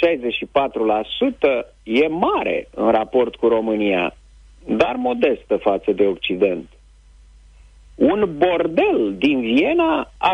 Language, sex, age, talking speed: Romanian, male, 50-69, 100 wpm